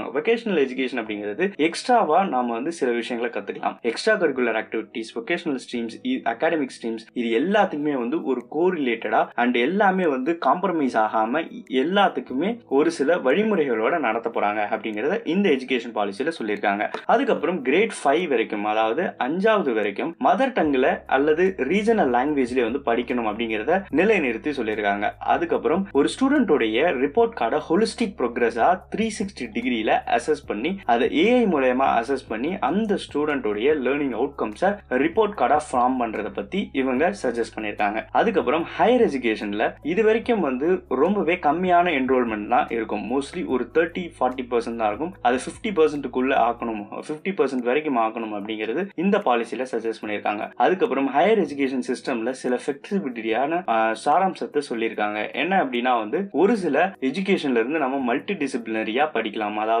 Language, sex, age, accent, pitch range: Tamil, male, 20-39, native, 115-175 Hz